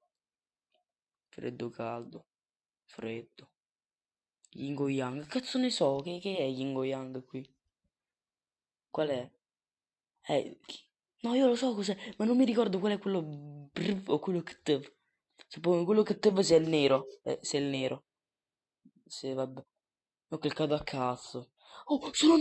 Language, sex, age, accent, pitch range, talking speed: Italian, female, 20-39, native, 135-180 Hz, 140 wpm